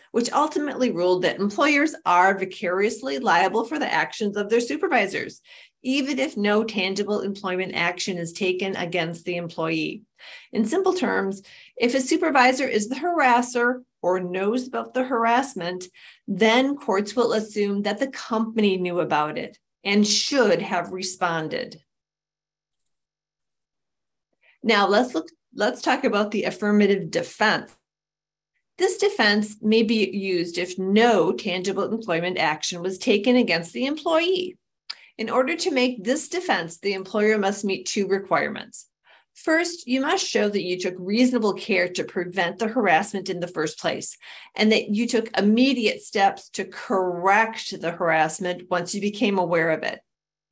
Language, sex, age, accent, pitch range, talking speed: English, female, 40-59, American, 185-250 Hz, 145 wpm